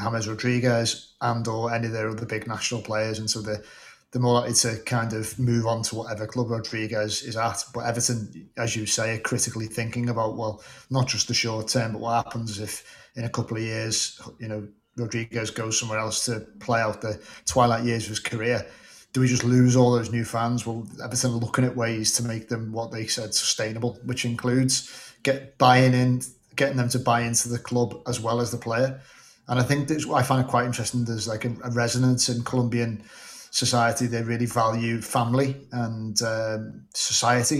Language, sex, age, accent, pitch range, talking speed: English, male, 30-49, British, 115-125 Hz, 205 wpm